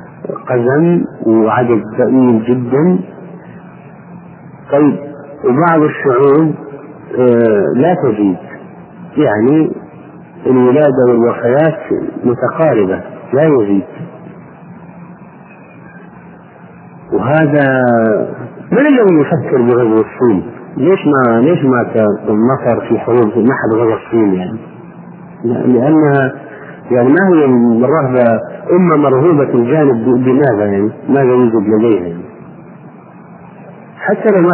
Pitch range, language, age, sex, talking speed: 120-160 Hz, Arabic, 50-69, male, 90 wpm